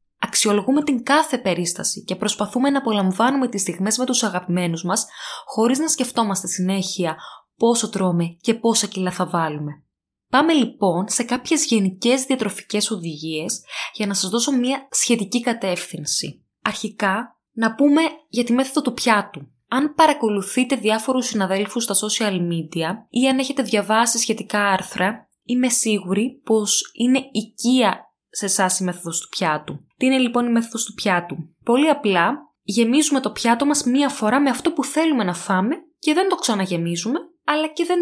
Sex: female